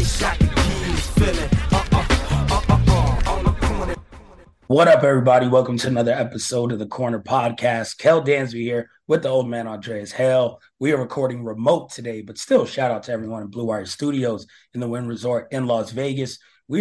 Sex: male